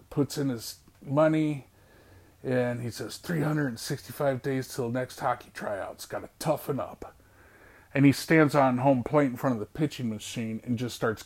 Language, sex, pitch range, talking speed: English, male, 110-145 Hz, 165 wpm